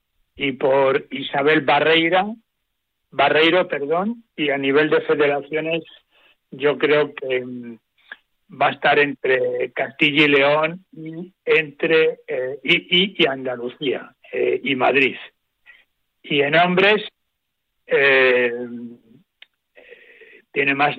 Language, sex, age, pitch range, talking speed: Spanish, male, 60-79, 135-175 Hz, 110 wpm